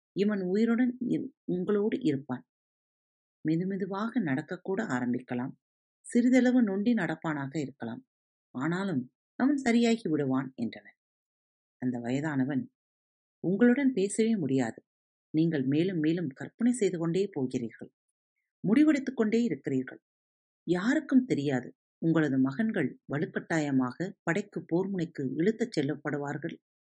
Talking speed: 85 wpm